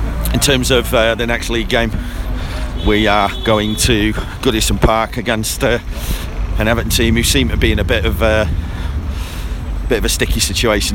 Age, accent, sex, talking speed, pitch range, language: 40-59, British, male, 175 wpm, 90-110 Hz, English